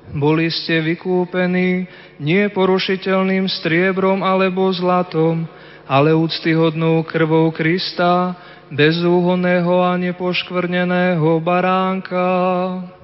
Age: 20-39